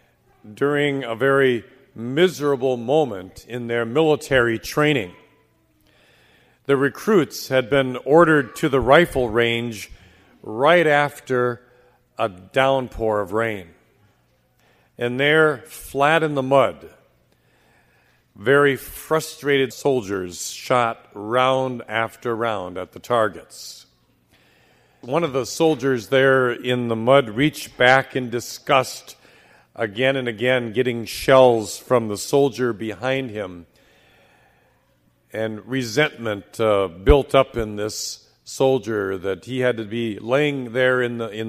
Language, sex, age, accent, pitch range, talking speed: English, male, 50-69, American, 110-140 Hz, 115 wpm